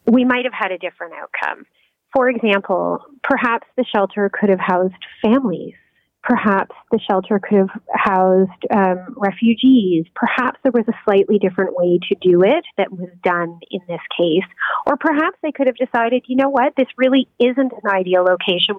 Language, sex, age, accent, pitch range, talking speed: English, female, 30-49, American, 190-255 Hz, 175 wpm